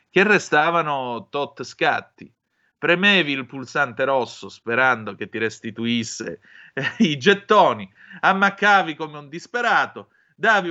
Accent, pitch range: native, 115-160 Hz